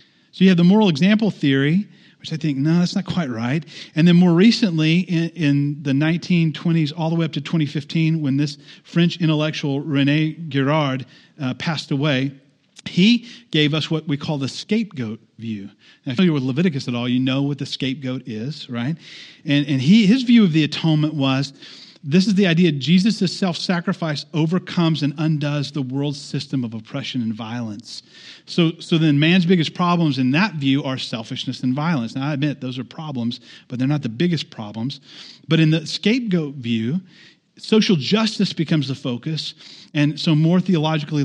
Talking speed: 180 wpm